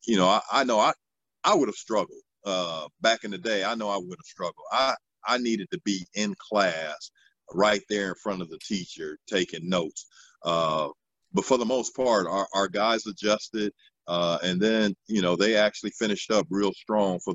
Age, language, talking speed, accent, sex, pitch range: 50-69, English, 205 wpm, American, male, 95-110 Hz